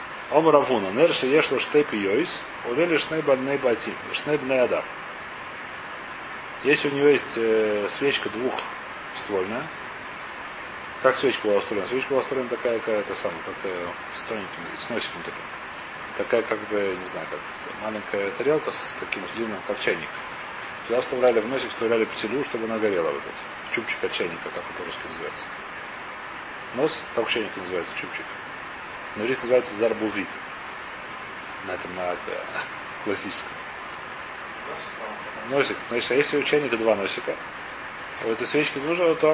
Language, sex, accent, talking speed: Russian, male, native, 125 wpm